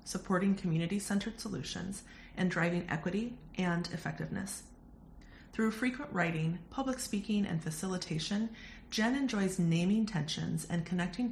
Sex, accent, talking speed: female, American, 110 wpm